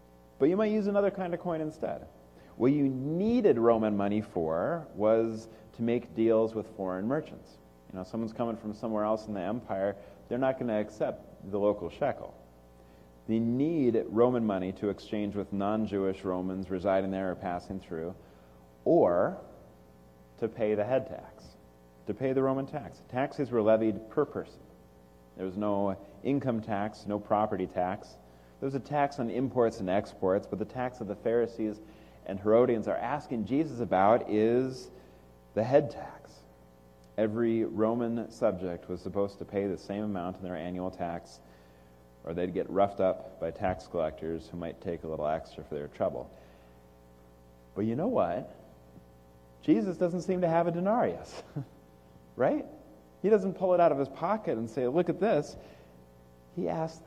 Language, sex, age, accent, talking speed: English, male, 30-49, American, 165 wpm